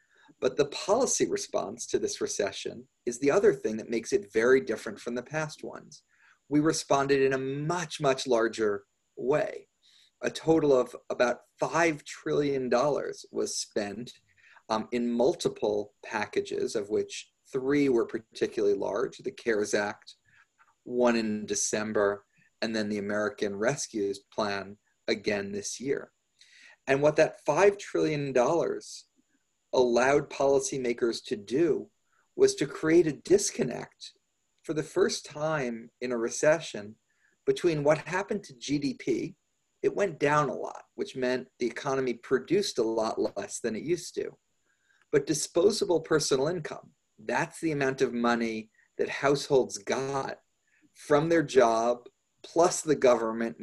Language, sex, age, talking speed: English, male, 30-49, 135 wpm